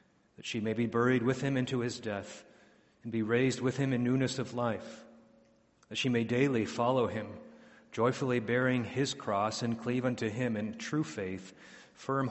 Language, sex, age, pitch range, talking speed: English, male, 40-59, 105-125 Hz, 180 wpm